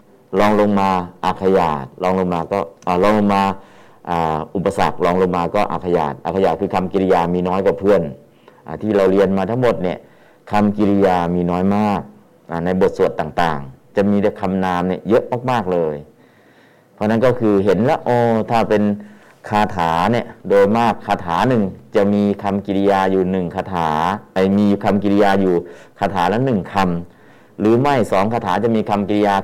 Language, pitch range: Thai, 90-105 Hz